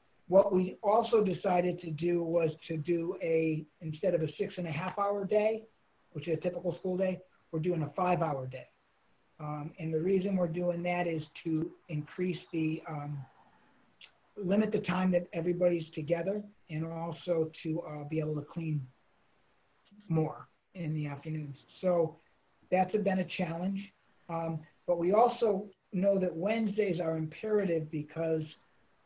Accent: American